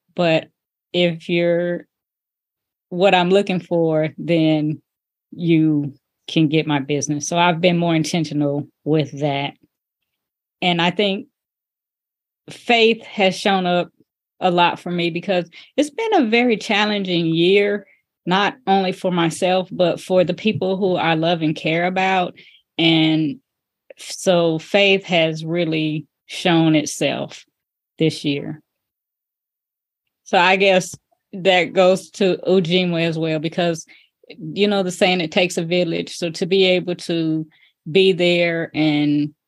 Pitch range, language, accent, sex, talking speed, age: 160-195 Hz, English, American, female, 130 wpm, 20-39